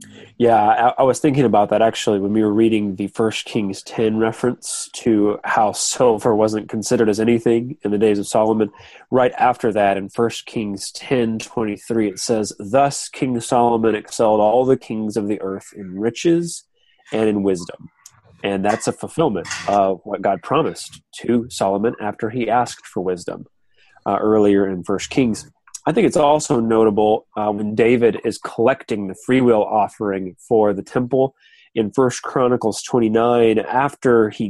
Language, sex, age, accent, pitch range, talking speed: English, male, 30-49, American, 105-125 Hz, 165 wpm